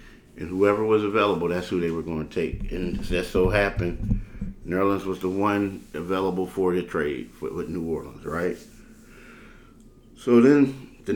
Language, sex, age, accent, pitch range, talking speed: English, male, 50-69, American, 75-100 Hz, 165 wpm